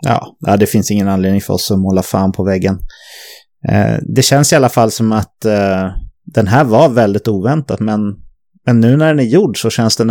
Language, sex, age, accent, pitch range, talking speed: English, male, 30-49, Swedish, 95-125 Hz, 195 wpm